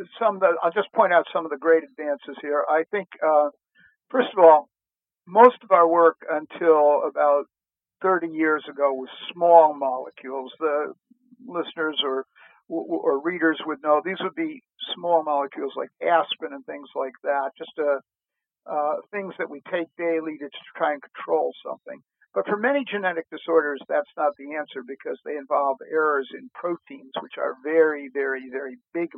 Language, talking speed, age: English, 170 wpm, 50-69